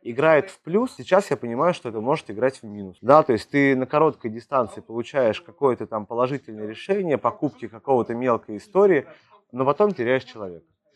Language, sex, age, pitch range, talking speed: Russian, male, 30-49, 115-150 Hz, 175 wpm